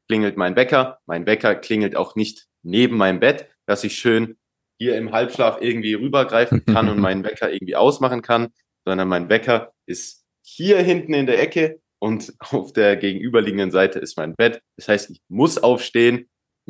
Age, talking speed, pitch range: 20-39, 175 wpm, 95-125 Hz